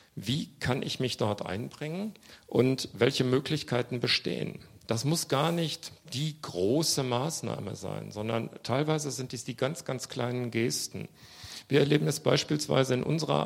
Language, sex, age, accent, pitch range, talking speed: German, male, 50-69, German, 115-140 Hz, 145 wpm